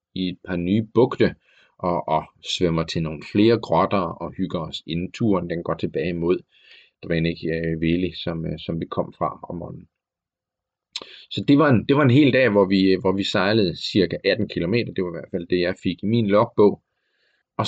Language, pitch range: Danish, 90-110 Hz